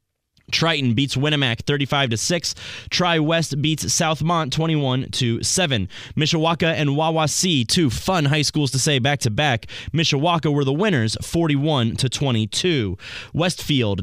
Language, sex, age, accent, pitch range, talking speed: English, male, 20-39, American, 130-160 Hz, 110 wpm